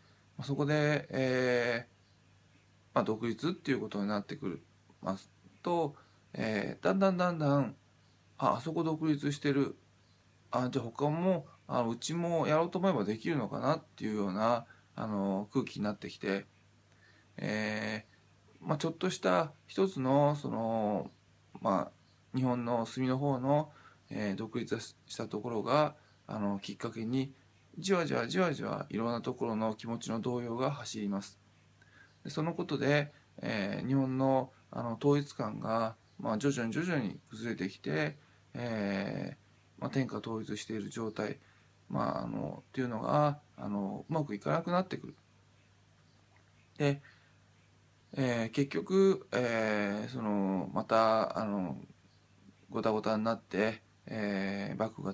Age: 20-39